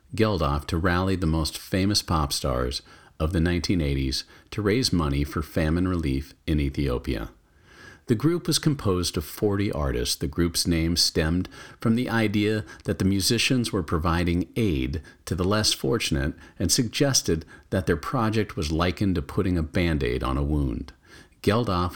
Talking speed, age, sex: 160 wpm, 50-69, male